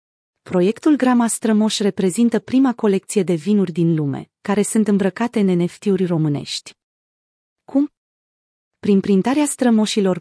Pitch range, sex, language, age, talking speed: 180-220 Hz, female, Romanian, 30-49, 120 wpm